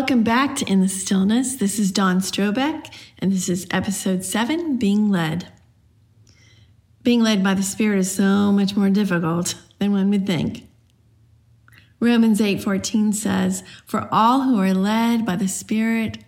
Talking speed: 160 wpm